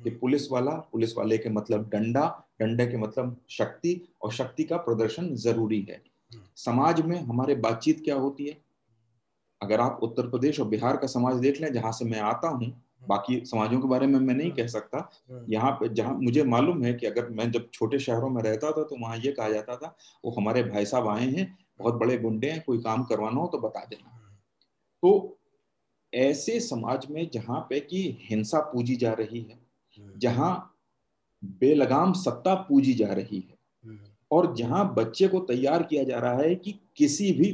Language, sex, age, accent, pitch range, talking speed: Hindi, male, 40-59, native, 115-155 Hz, 190 wpm